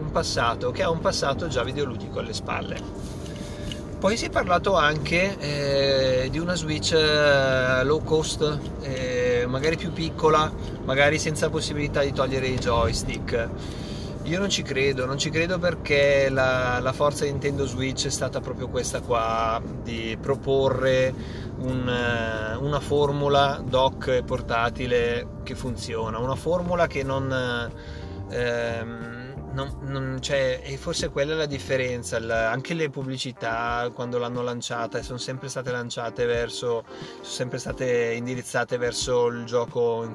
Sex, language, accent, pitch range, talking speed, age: male, Italian, native, 115-135 Hz, 135 wpm, 30-49